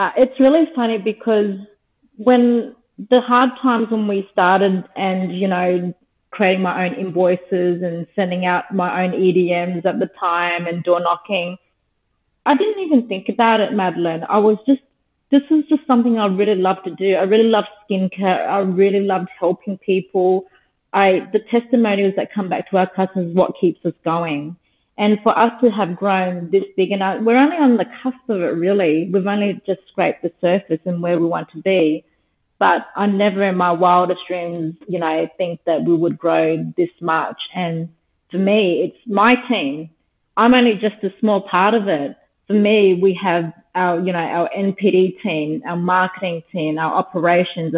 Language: English